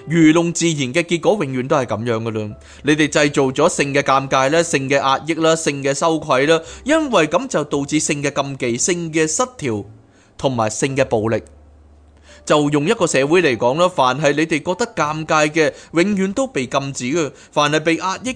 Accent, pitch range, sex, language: native, 125-175 Hz, male, Chinese